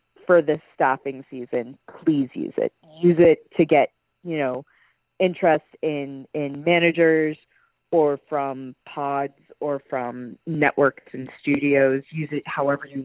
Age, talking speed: 30-49, 135 wpm